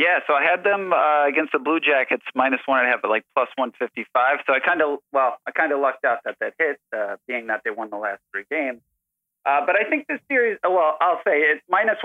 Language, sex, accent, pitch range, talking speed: English, male, American, 135-195 Hz, 260 wpm